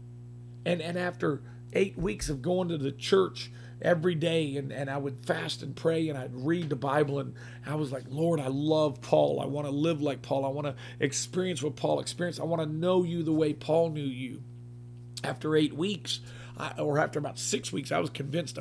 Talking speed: 215 wpm